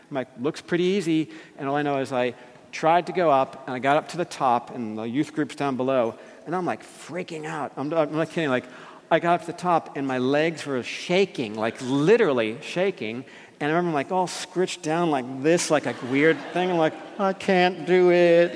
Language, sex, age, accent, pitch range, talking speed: English, male, 50-69, American, 145-190 Hz, 225 wpm